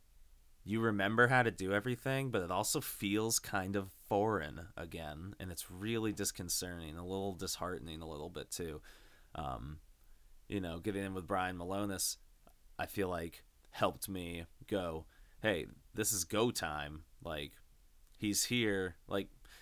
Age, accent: 20-39, American